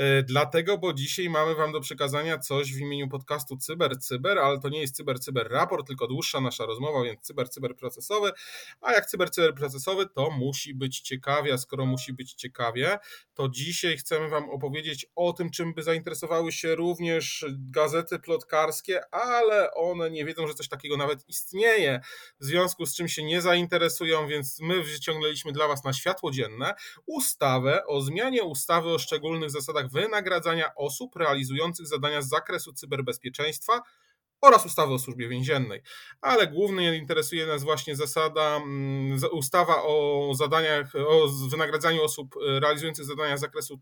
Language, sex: Polish, male